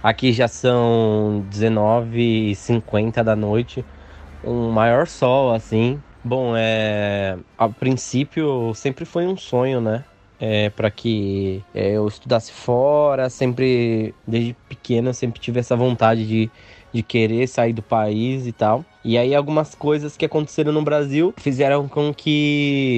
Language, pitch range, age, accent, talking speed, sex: Portuguese, 110-130 Hz, 20-39, Brazilian, 140 wpm, male